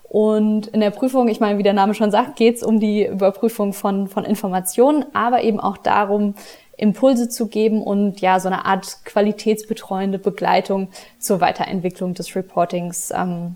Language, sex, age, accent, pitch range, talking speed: German, female, 20-39, German, 185-215 Hz, 170 wpm